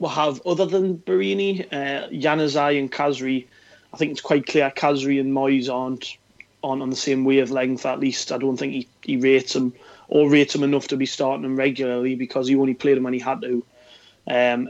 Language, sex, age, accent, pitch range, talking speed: English, male, 30-49, British, 125-140 Hz, 210 wpm